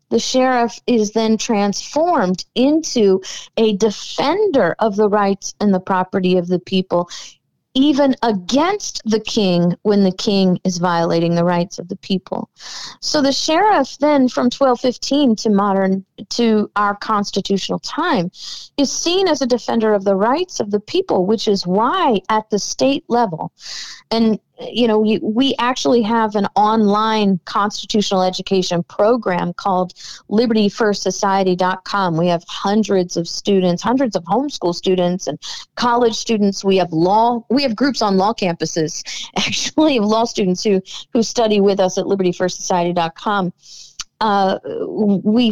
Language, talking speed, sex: English, 145 wpm, female